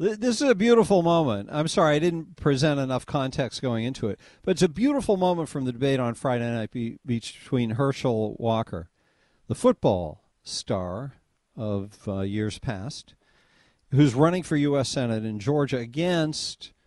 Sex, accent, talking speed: male, American, 155 wpm